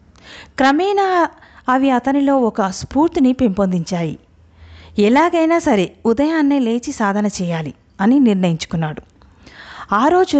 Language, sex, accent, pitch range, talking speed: Telugu, female, native, 200-270 Hz, 85 wpm